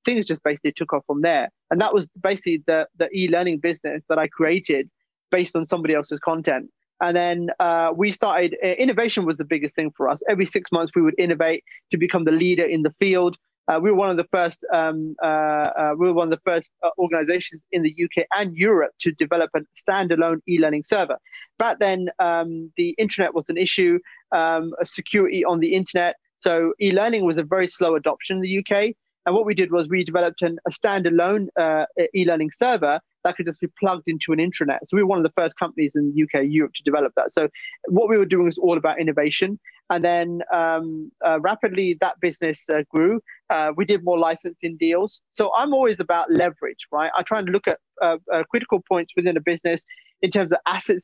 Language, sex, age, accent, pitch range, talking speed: English, male, 20-39, British, 165-195 Hz, 210 wpm